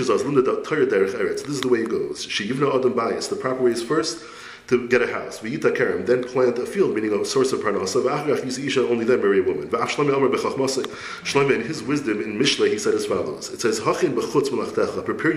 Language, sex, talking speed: English, male, 155 wpm